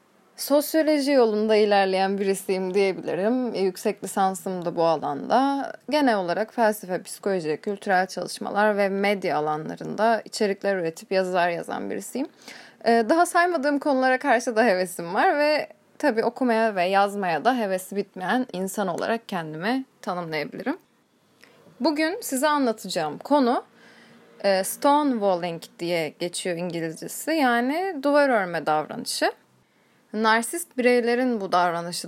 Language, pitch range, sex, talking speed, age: Turkish, 185-255 Hz, female, 110 wpm, 10-29